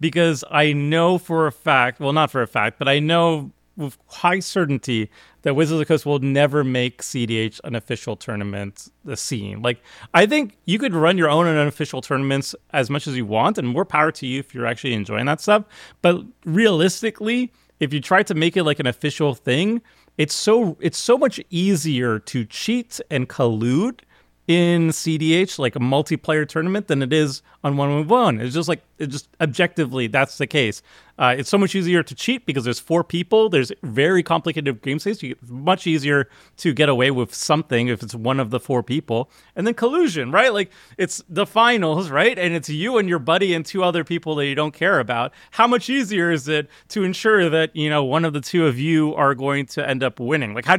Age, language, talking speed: 30-49, English, 210 wpm